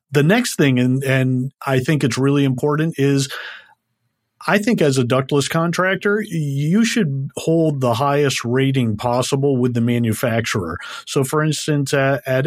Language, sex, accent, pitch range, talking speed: English, male, American, 120-150 Hz, 150 wpm